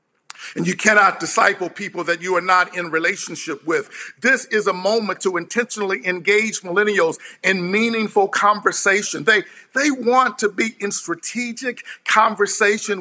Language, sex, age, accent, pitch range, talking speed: English, male, 50-69, American, 190-230 Hz, 145 wpm